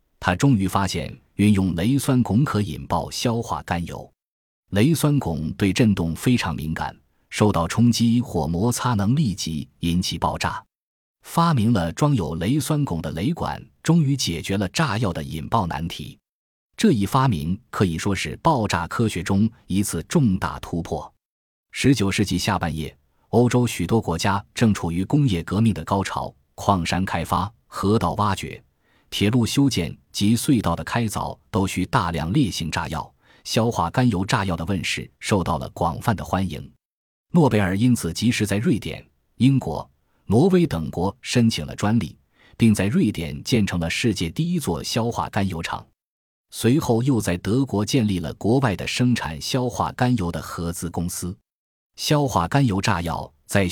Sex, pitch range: male, 85-120 Hz